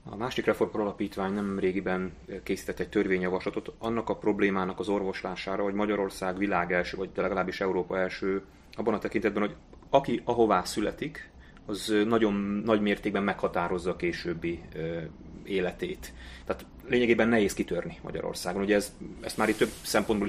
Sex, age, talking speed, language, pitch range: male, 30-49, 145 wpm, Hungarian, 95-110 Hz